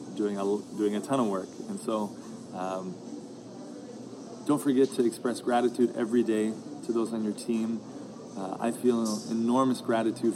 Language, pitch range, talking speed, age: English, 105-125 Hz, 155 wpm, 20-39